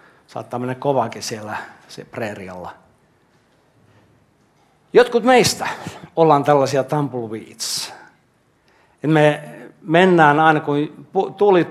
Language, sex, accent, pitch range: Finnish, male, native, 130-170 Hz